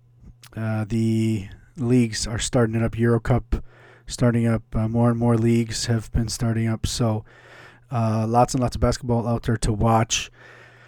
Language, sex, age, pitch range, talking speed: English, male, 30-49, 115-130 Hz, 170 wpm